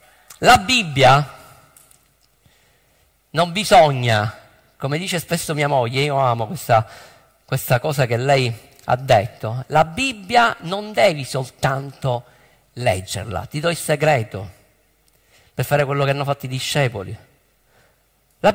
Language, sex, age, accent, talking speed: Italian, male, 50-69, native, 120 wpm